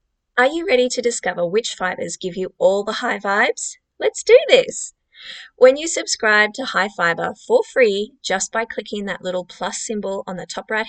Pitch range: 195-290 Hz